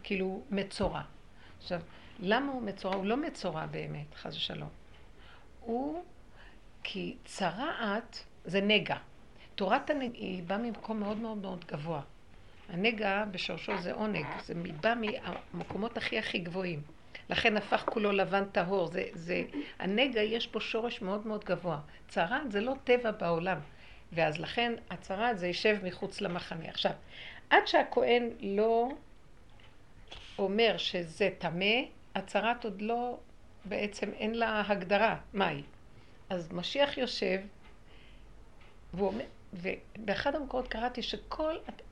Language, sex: Hebrew, female